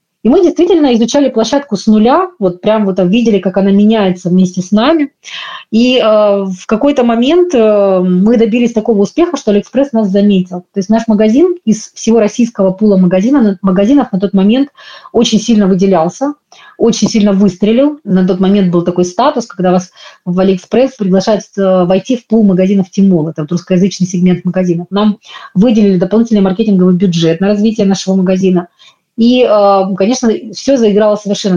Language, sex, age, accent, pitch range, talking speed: Russian, female, 30-49, native, 185-230 Hz, 160 wpm